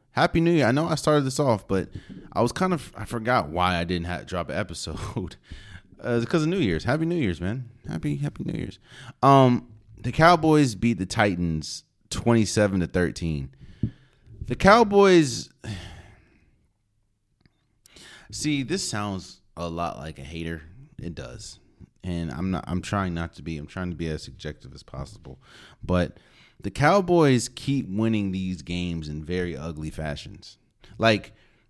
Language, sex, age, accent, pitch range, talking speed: English, male, 30-49, American, 90-135 Hz, 165 wpm